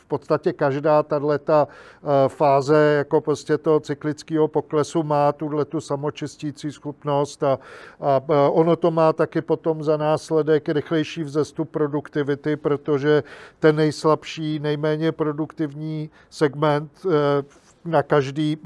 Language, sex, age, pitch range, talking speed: Czech, male, 50-69, 145-160 Hz, 100 wpm